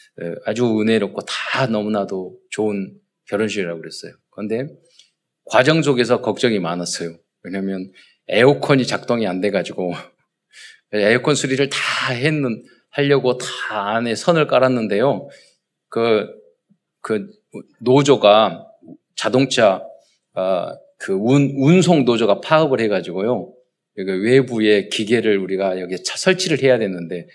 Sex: male